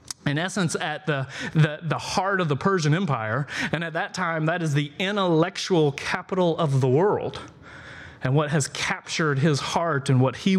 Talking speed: 180 wpm